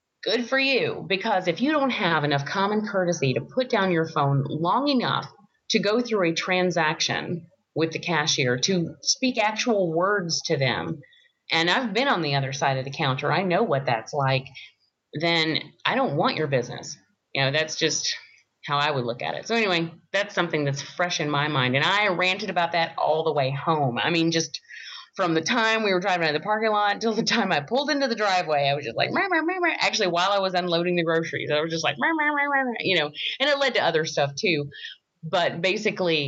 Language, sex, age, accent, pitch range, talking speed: English, female, 30-49, American, 150-215 Hz, 215 wpm